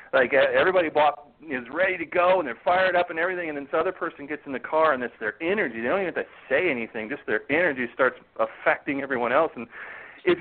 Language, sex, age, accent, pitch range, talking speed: English, male, 40-59, American, 145-185 Hz, 240 wpm